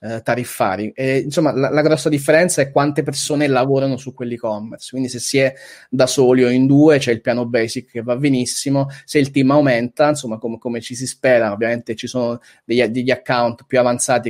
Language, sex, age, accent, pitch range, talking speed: Italian, male, 20-39, native, 115-140 Hz, 195 wpm